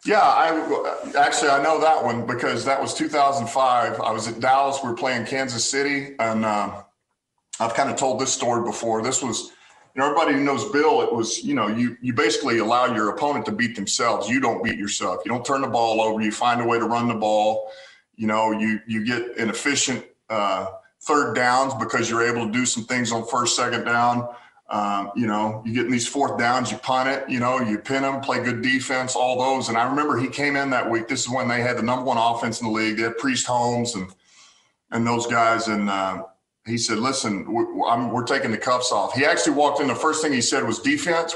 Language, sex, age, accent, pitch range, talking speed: English, male, 40-59, American, 110-135 Hz, 230 wpm